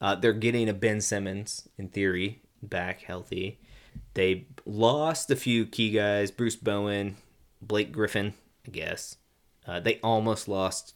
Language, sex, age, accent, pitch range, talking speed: English, male, 20-39, American, 95-110 Hz, 140 wpm